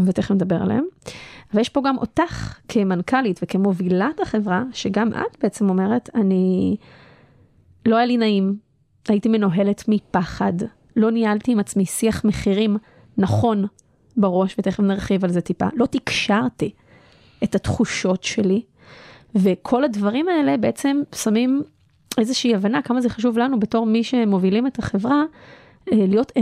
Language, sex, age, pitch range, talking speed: Hebrew, female, 20-39, 195-235 Hz, 130 wpm